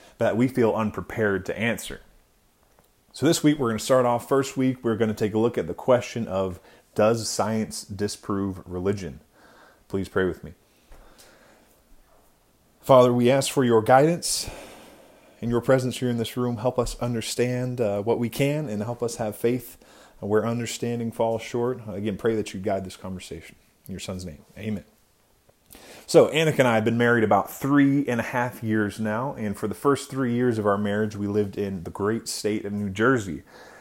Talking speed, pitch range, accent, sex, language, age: 190 wpm, 105-125 Hz, American, male, English, 30-49